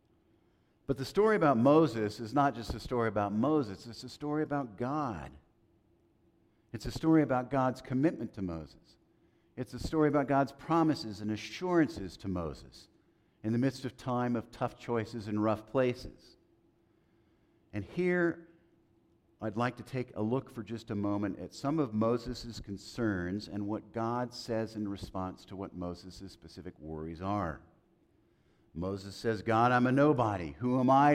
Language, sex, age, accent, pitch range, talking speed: English, male, 50-69, American, 100-130 Hz, 160 wpm